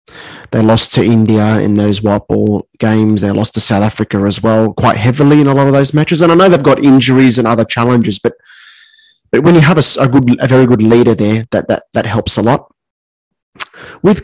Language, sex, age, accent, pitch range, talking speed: English, male, 20-39, Australian, 110-140 Hz, 225 wpm